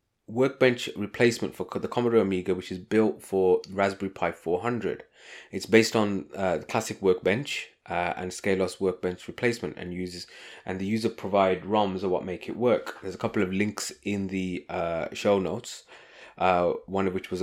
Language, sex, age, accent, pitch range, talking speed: English, male, 20-39, British, 90-105 Hz, 175 wpm